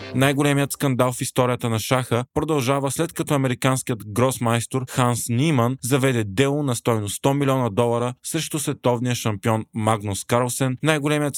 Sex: male